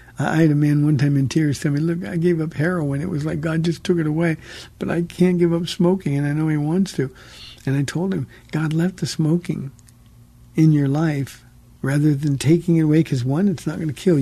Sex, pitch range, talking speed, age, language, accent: male, 140-170 Hz, 245 wpm, 60-79, English, American